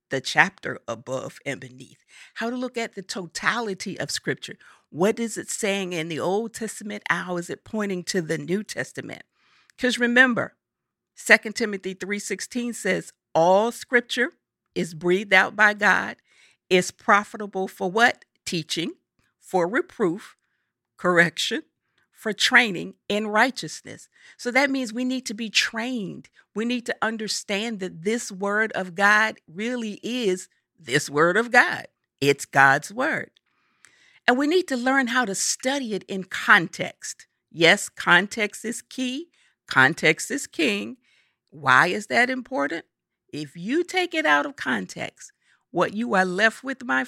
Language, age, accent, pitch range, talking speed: English, 50-69, American, 185-245 Hz, 145 wpm